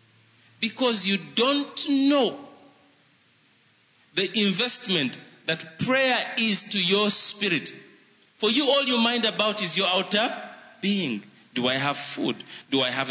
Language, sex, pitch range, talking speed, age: English, male, 185-245 Hz, 135 wpm, 40-59